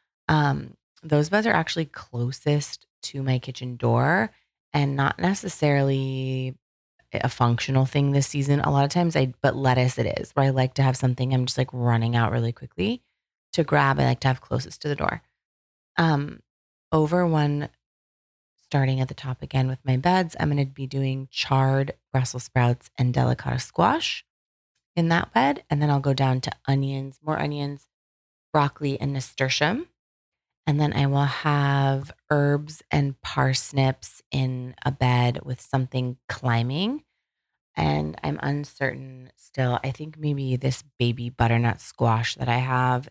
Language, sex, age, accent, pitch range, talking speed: English, female, 20-39, American, 125-145 Hz, 160 wpm